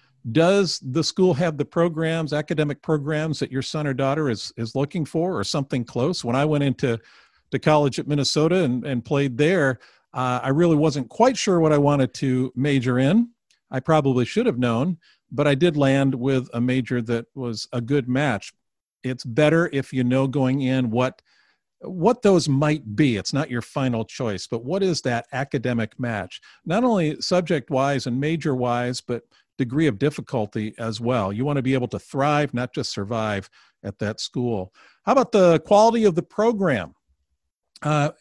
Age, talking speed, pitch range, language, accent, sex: 50-69, 180 wpm, 130-165 Hz, English, American, male